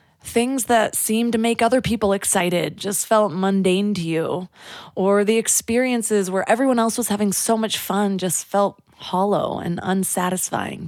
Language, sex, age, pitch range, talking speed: English, female, 20-39, 190-245 Hz, 160 wpm